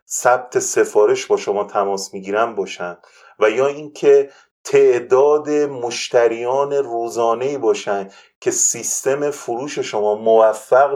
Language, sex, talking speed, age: Persian, male, 105 wpm, 30-49